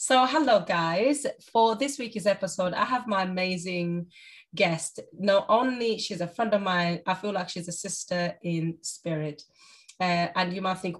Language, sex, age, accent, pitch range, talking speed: English, female, 20-39, British, 170-200 Hz, 175 wpm